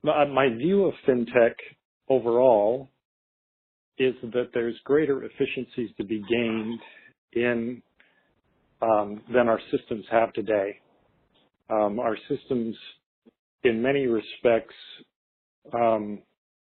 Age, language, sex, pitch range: 50-69, English, male, 110-135 Hz